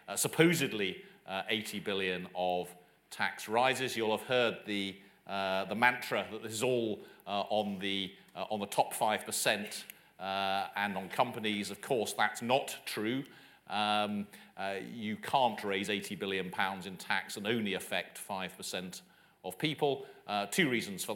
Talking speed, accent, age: 160 wpm, British, 40-59